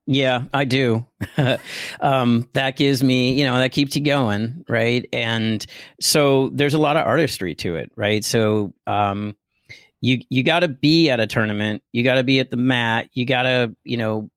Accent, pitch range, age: American, 105-130 Hz, 40-59